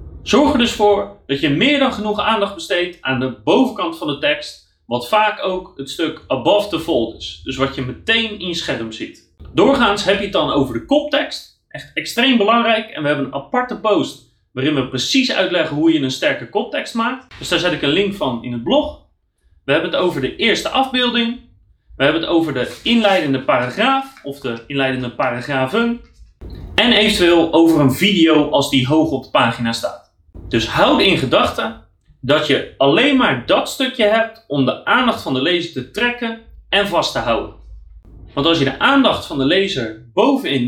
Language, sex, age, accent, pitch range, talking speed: Dutch, male, 30-49, Dutch, 135-225 Hz, 195 wpm